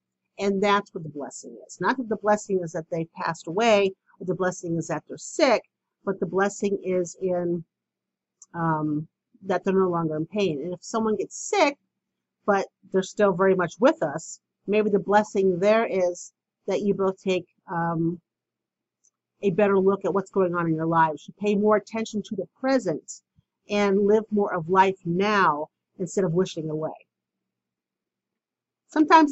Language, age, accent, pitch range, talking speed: English, 50-69, American, 180-215 Hz, 175 wpm